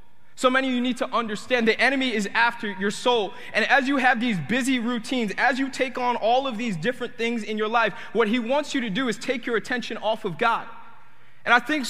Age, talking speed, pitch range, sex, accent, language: 20-39, 240 wpm, 230-280 Hz, male, American, English